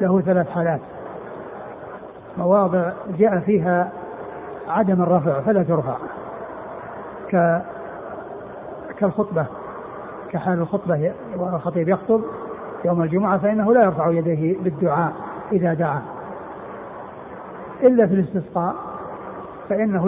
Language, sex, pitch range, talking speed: Arabic, male, 170-200 Hz, 85 wpm